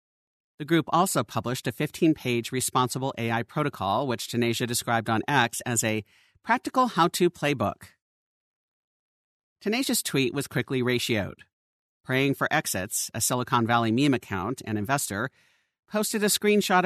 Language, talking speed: English, 140 wpm